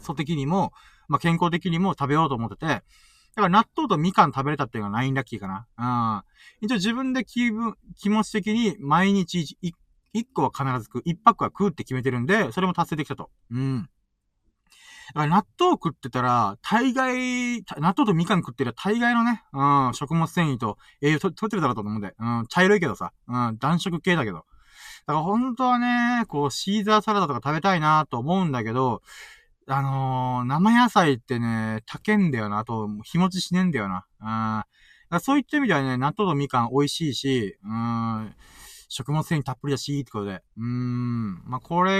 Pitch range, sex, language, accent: 120-195 Hz, male, Japanese, native